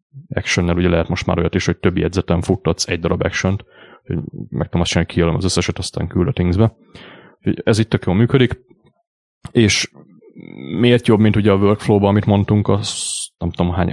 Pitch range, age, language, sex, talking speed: 90-105 Hz, 30-49, Hungarian, male, 170 wpm